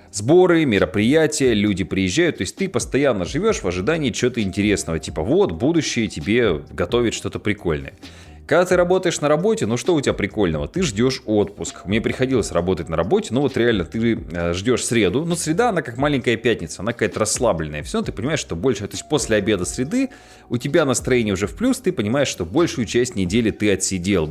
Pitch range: 90-130 Hz